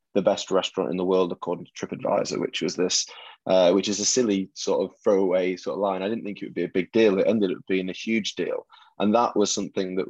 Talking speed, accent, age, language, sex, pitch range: 260 wpm, British, 20-39, English, male, 90-105 Hz